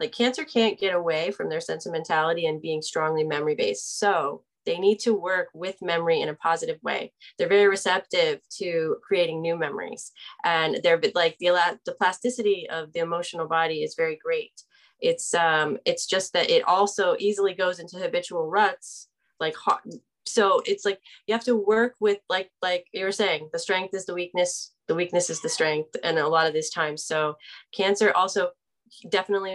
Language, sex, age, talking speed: English, female, 20-39, 180 wpm